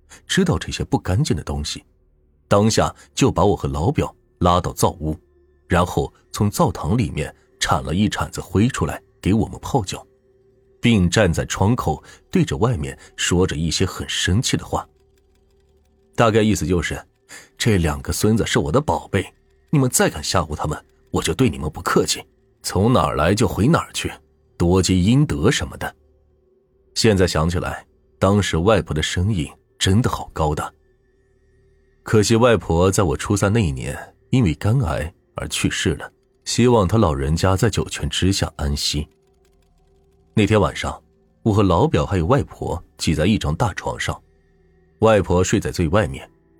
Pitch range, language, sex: 80-110 Hz, Chinese, male